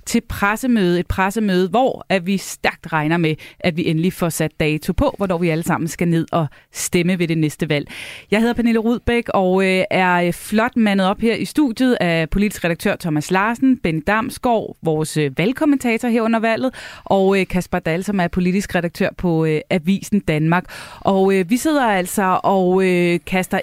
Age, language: 20-39, Danish